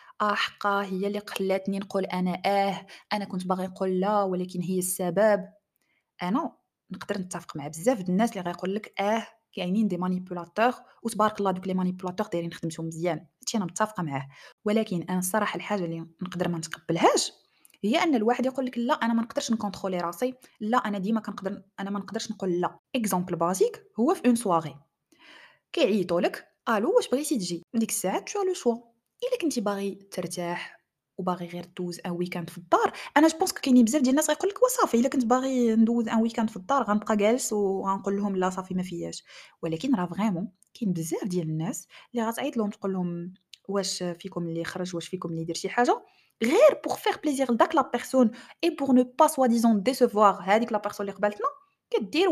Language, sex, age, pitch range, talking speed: Arabic, female, 20-39, 185-245 Hz, 170 wpm